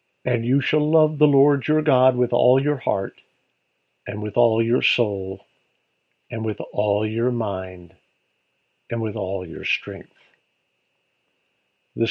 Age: 50-69